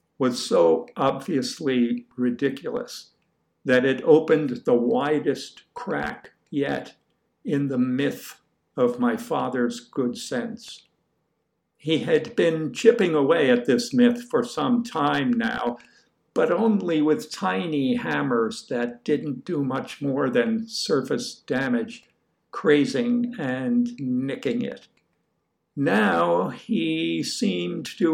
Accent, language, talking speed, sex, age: American, English, 110 wpm, male, 60-79